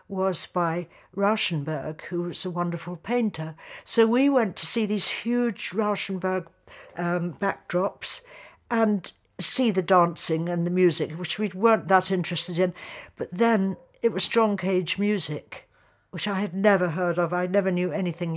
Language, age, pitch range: English, 60-79, 170-215 Hz